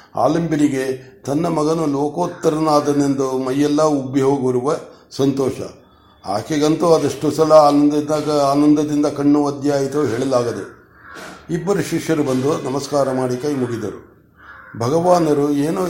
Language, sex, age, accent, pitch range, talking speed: Kannada, male, 60-79, native, 135-155 Hz, 95 wpm